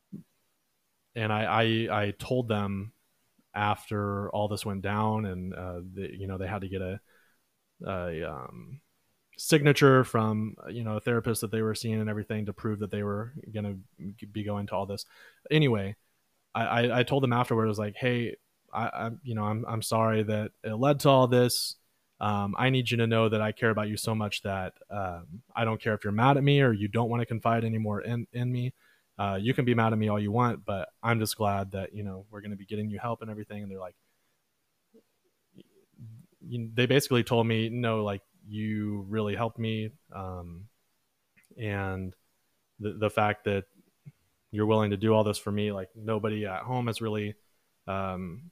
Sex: male